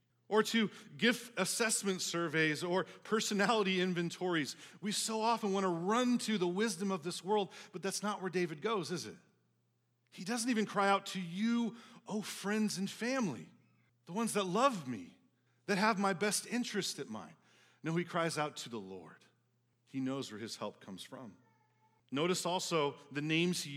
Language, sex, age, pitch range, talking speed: English, male, 40-59, 175-225 Hz, 175 wpm